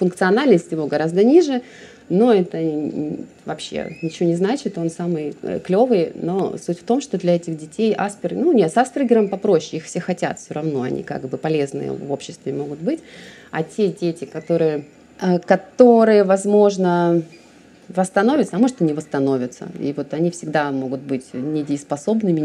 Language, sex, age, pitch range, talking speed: Russian, female, 30-49, 150-200 Hz, 160 wpm